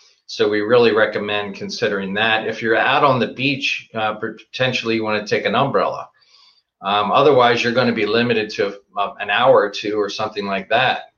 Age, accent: 40-59, American